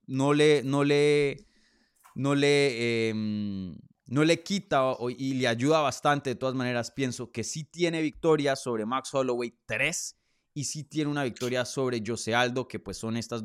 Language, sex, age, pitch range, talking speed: Spanish, male, 20-39, 110-145 Hz, 170 wpm